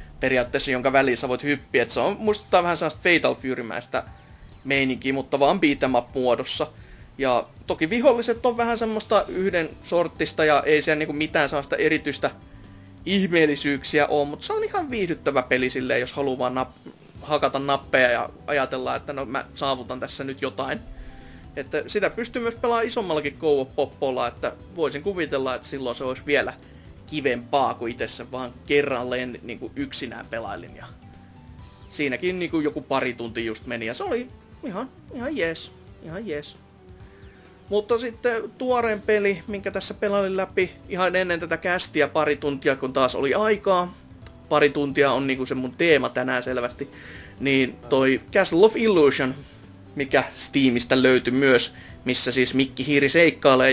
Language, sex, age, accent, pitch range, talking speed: Finnish, male, 30-49, native, 125-175 Hz, 150 wpm